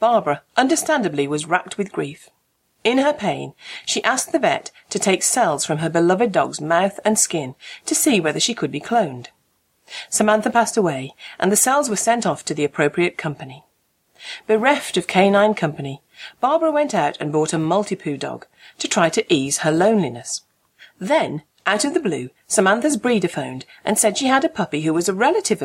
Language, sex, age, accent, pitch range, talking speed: English, female, 40-59, British, 160-260 Hz, 185 wpm